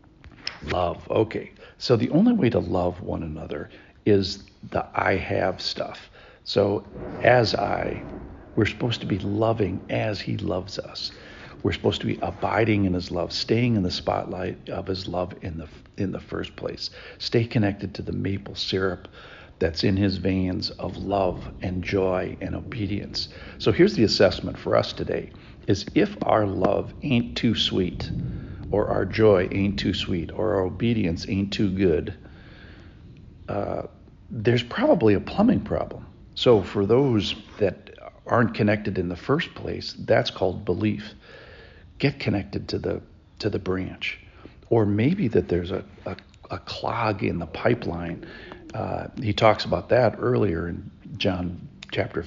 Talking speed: 155 wpm